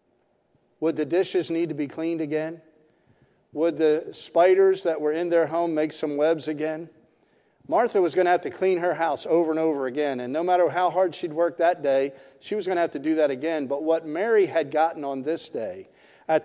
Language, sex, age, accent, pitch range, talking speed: English, male, 50-69, American, 130-165 Hz, 220 wpm